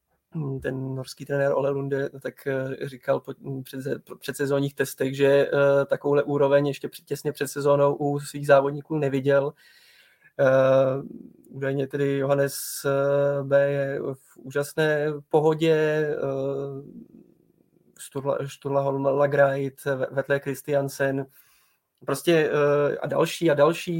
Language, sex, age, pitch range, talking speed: Czech, male, 20-39, 140-145 Hz, 100 wpm